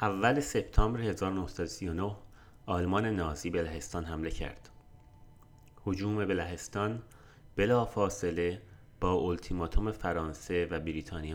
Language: Persian